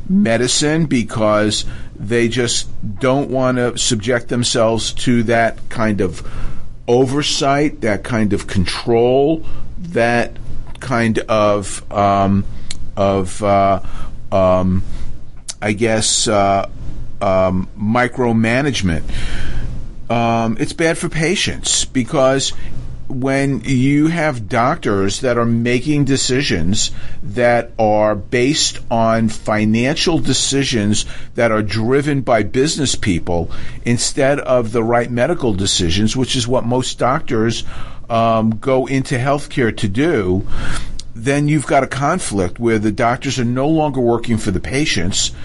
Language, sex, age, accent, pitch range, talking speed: English, male, 40-59, American, 105-130 Hz, 115 wpm